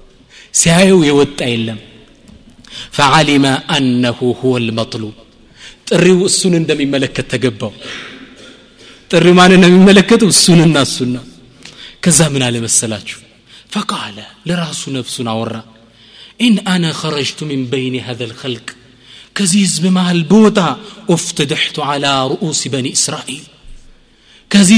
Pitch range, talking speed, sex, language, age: 125-185 Hz, 100 wpm, male, Amharic, 30-49